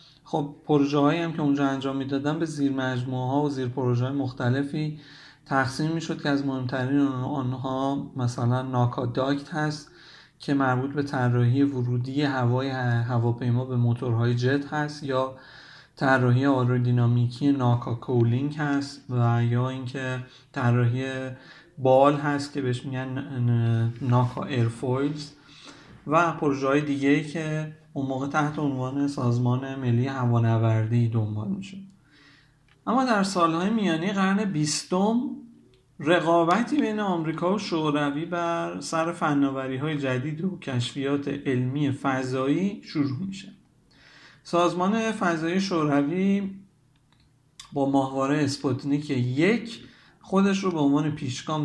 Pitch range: 130-155 Hz